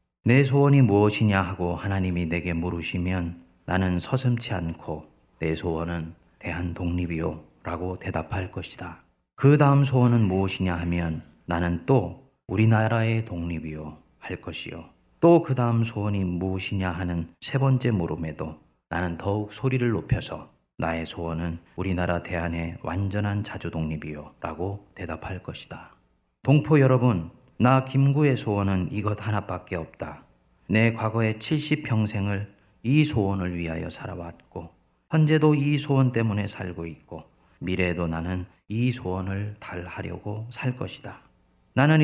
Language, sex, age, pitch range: Korean, male, 30-49, 85-120 Hz